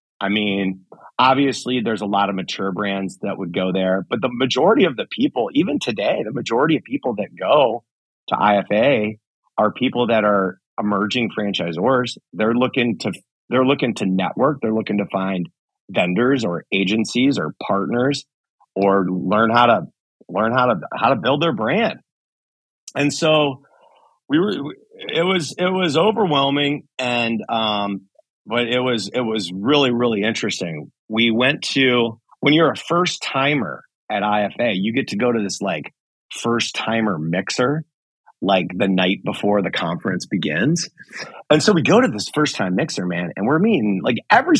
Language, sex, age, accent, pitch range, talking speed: English, male, 40-59, American, 100-135 Hz, 165 wpm